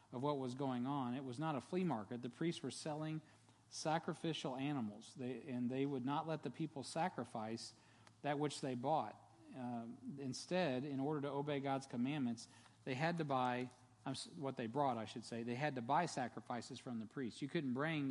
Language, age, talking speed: English, 40-59, 190 wpm